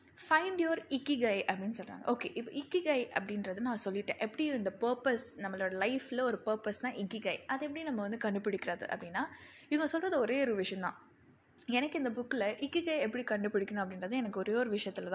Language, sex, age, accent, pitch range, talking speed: English, female, 10-29, Indian, 200-270 Hz, 105 wpm